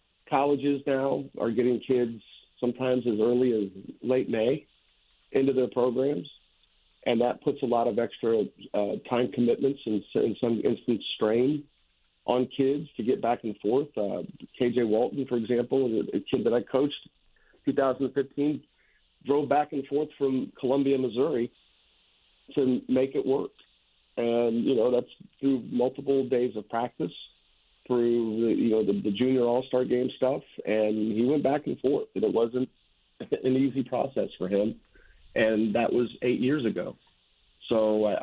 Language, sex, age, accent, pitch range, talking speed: English, male, 50-69, American, 110-135 Hz, 155 wpm